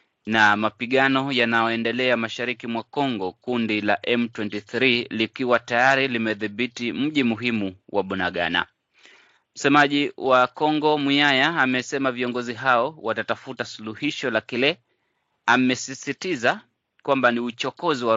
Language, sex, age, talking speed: Swahili, male, 30-49, 105 wpm